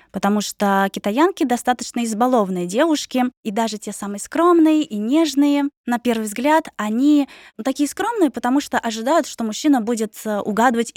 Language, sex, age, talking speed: Russian, female, 20-39, 150 wpm